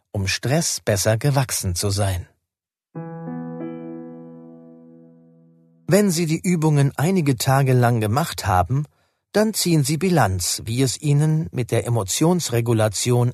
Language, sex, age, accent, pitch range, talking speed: German, male, 40-59, German, 100-145 Hz, 115 wpm